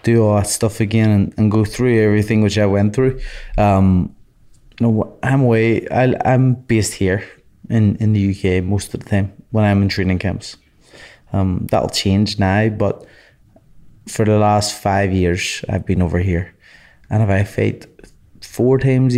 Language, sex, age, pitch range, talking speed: English, male, 20-39, 95-110 Hz, 180 wpm